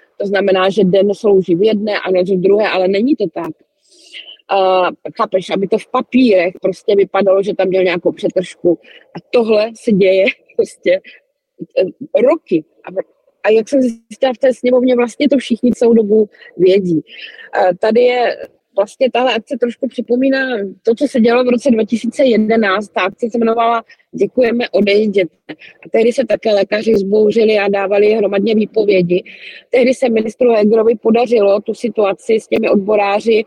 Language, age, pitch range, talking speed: Czech, 20-39, 190-235 Hz, 160 wpm